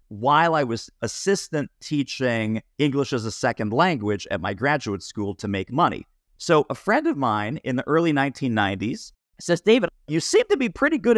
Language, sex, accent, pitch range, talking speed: English, male, American, 110-150 Hz, 185 wpm